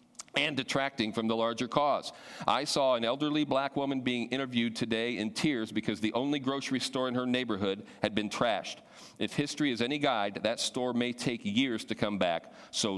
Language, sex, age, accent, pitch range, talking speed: English, male, 40-59, American, 110-140 Hz, 195 wpm